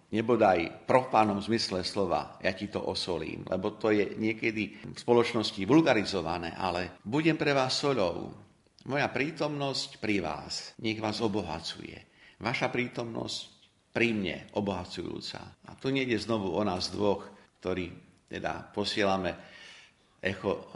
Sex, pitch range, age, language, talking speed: male, 95-115 Hz, 50-69, Slovak, 125 wpm